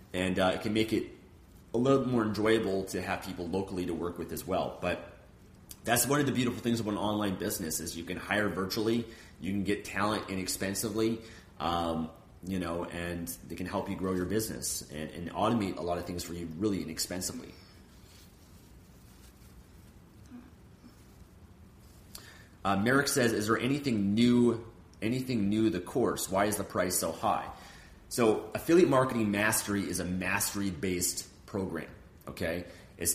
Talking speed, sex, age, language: 165 wpm, male, 30-49, English